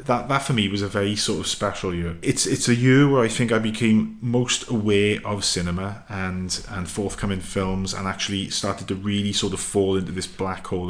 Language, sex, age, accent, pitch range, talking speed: English, male, 30-49, British, 100-115 Hz, 220 wpm